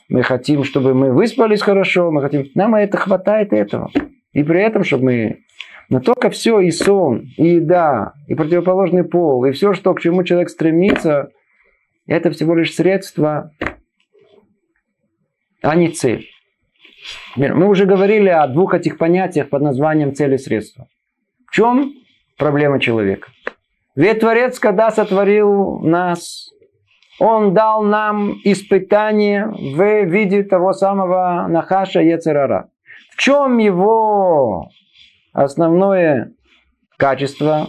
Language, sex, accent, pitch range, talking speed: Russian, male, native, 150-210 Hz, 125 wpm